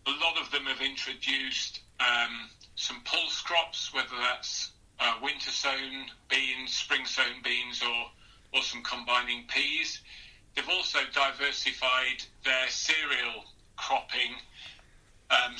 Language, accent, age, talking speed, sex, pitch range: English, British, 40-59, 120 wpm, male, 115-130 Hz